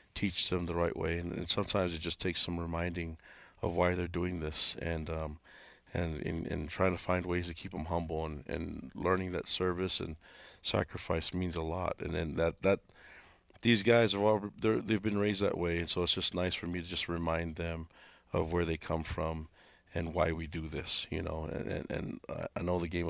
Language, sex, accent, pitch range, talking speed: English, male, American, 80-95 Hz, 220 wpm